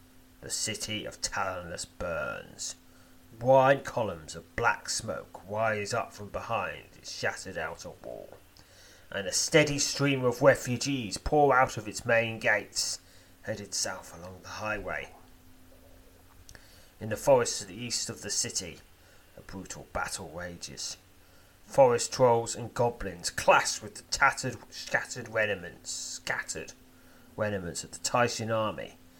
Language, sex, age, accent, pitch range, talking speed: English, male, 30-49, British, 85-110 Hz, 130 wpm